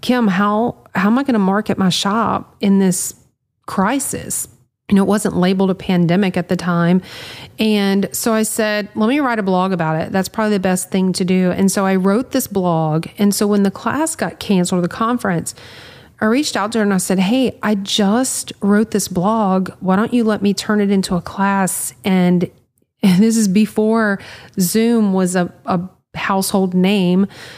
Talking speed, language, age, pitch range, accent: 200 wpm, English, 40-59, 185-215 Hz, American